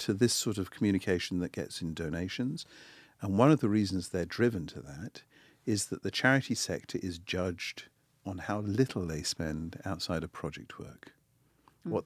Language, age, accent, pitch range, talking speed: English, 50-69, British, 85-115 Hz, 175 wpm